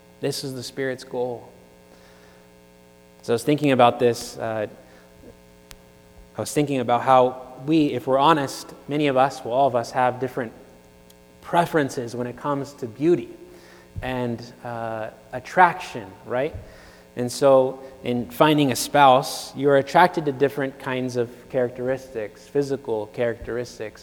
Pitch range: 90-140 Hz